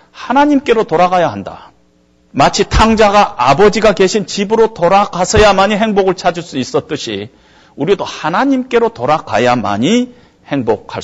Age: 40-59